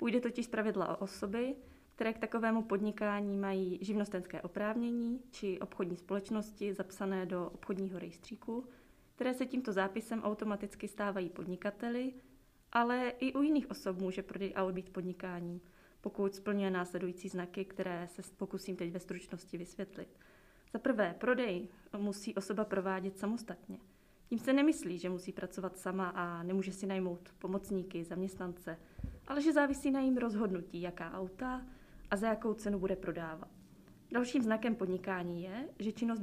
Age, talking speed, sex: 20-39, 140 wpm, female